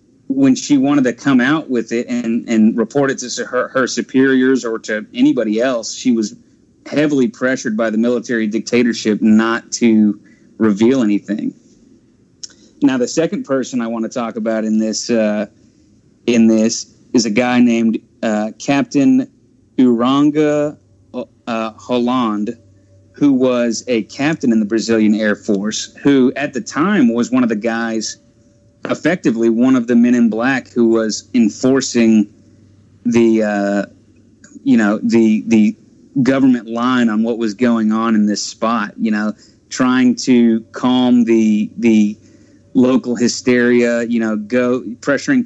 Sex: male